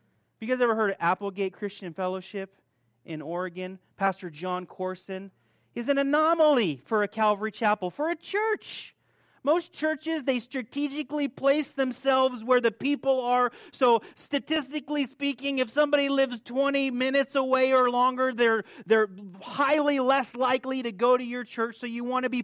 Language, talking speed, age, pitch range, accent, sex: English, 160 wpm, 30-49, 210-275 Hz, American, male